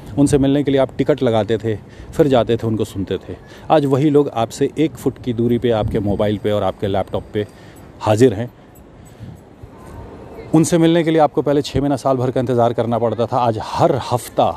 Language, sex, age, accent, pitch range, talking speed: Hindi, male, 40-59, native, 110-135 Hz, 205 wpm